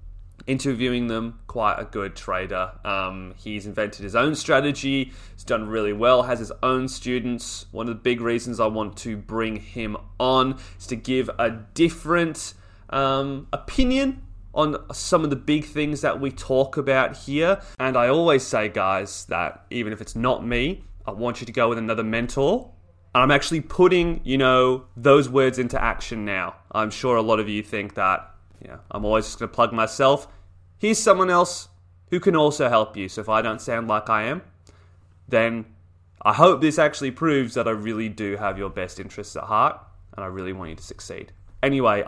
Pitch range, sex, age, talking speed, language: 100-135 Hz, male, 20-39, 195 wpm, English